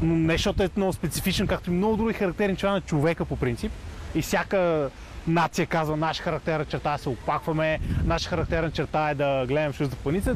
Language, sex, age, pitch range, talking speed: Bulgarian, male, 20-39, 145-195 Hz, 210 wpm